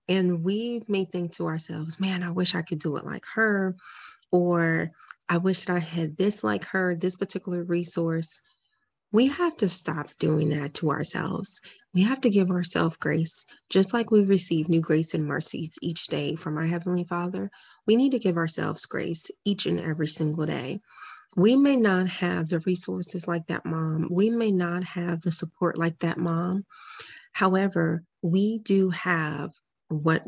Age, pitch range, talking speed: 30-49, 165-195 Hz, 175 wpm